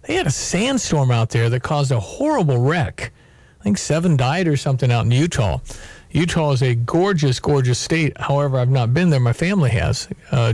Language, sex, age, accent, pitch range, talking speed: English, male, 50-69, American, 140-185 Hz, 200 wpm